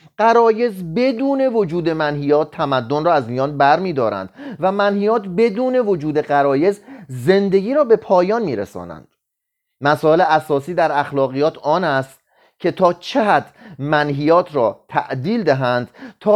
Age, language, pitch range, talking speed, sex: 30-49, Persian, 145-225 Hz, 130 wpm, male